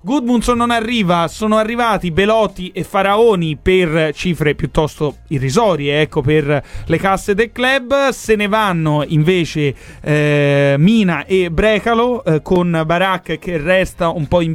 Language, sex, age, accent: Italian, male, 30-49, native